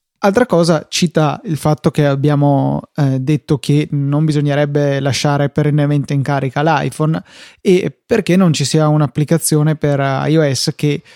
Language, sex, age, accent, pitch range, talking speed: Italian, male, 20-39, native, 145-160 Hz, 140 wpm